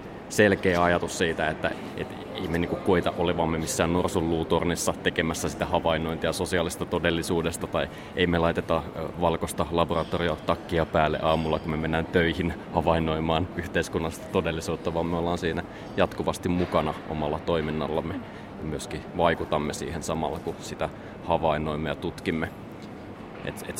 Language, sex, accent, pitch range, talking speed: Finnish, male, native, 80-90 Hz, 135 wpm